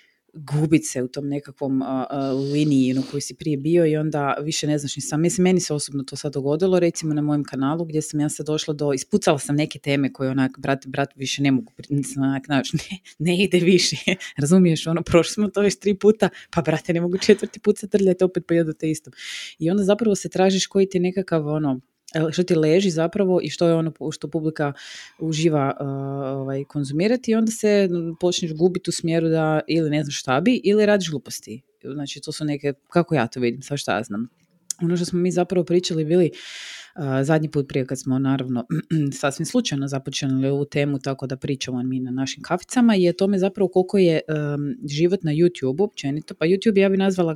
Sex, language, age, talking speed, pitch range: female, Croatian, 20-39, 200 wpm, 140-180 Hz